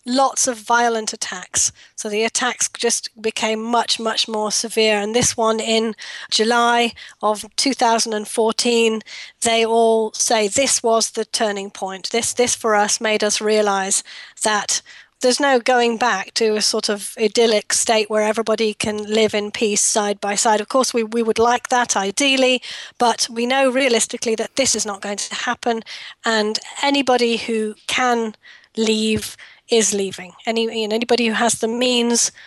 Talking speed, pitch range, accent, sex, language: 165 wpm, 215-240 Hz, British, female, English